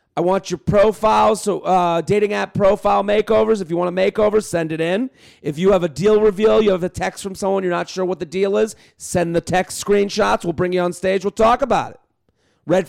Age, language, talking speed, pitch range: 40-59, English, 240 wpm, 175-215 Hz